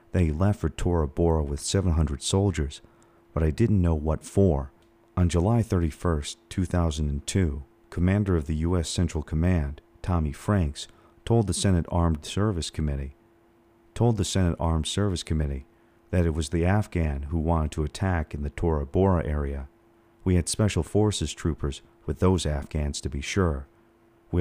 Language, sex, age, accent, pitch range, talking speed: English, male, 40-59, American, 80-100 Hz, 155 wpm